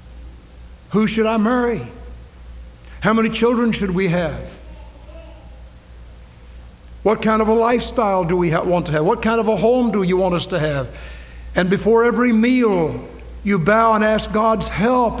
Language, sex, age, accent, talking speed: English, male, 60-79, American, 160 wpm